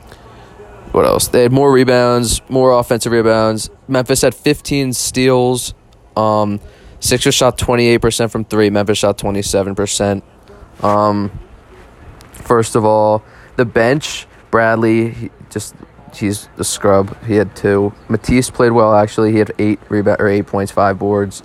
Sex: male